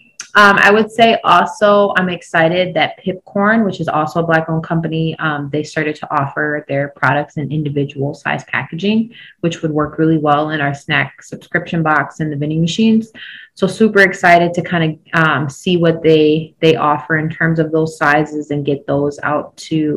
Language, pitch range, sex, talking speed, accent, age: English, 150-175 Hz, female, 185 wpm, American, 20-39